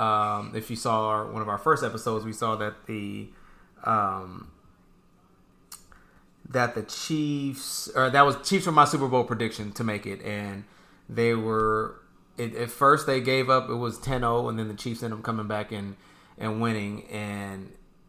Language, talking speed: English, 175 wpm